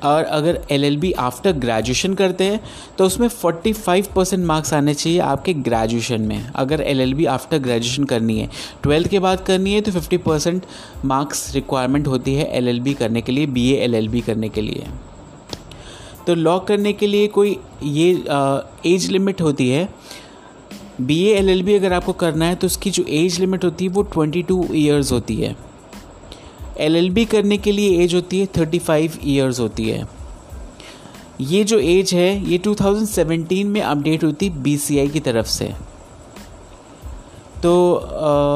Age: 30-49